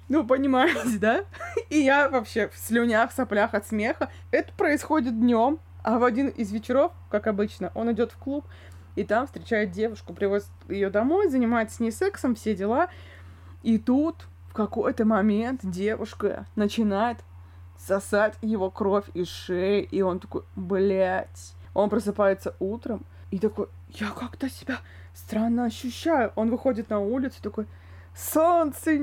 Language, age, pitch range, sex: Russian, 20-39, 205-260 Hz, female